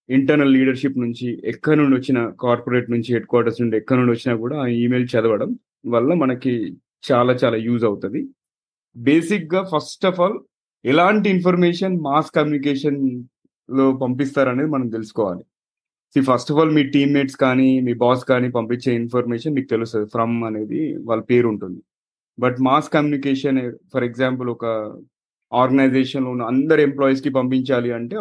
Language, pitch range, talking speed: Telugu, 120-140 Hz, 145 wpm